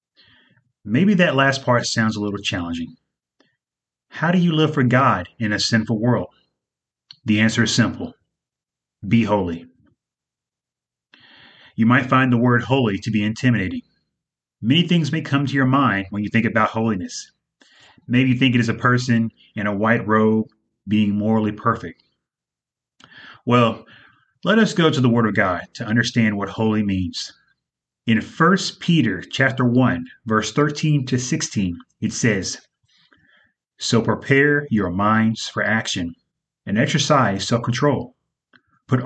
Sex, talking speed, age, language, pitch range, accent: male, 145 wpm, 30-49, English, 105-135 Hz, American